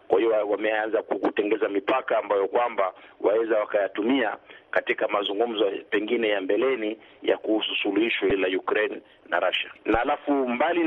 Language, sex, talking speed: Swahili, male, 135 wpm